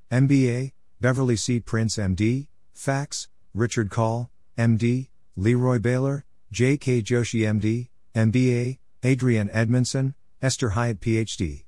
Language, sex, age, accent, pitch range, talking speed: English, male, 50-69, American, 90-120 Hz, 105 wpm